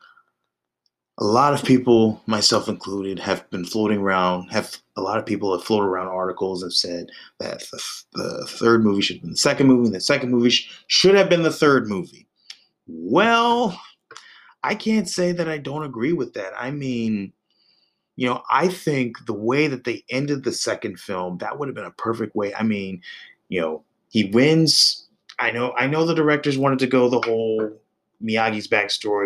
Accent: American